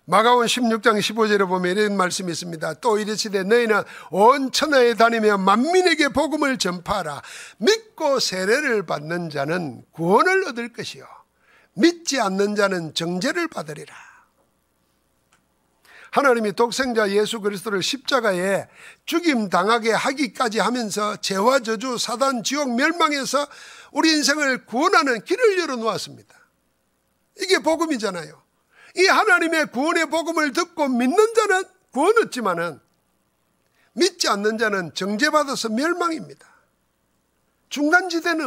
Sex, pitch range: male, 220-335 Hz